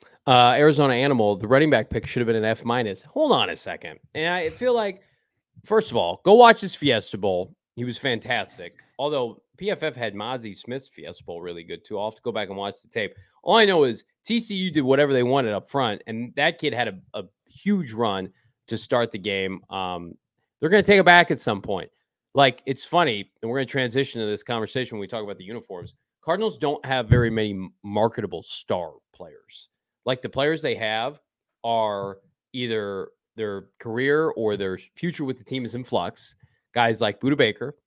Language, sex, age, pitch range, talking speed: English, male, 30-49, 115-165 Hz, 210 wpm